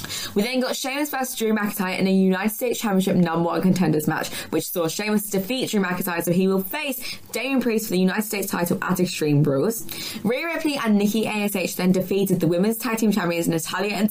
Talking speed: 215 wpm